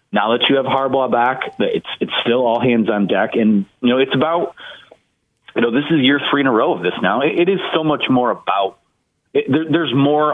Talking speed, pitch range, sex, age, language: 240 wpm, 100-140 Hz, male, 30-49, English